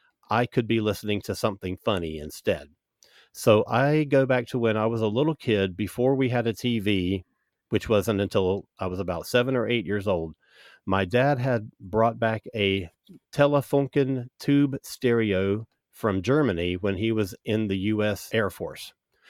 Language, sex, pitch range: English, male, 100-120 Hz